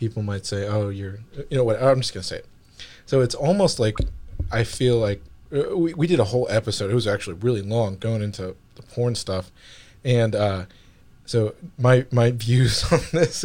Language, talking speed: English, 195 wpm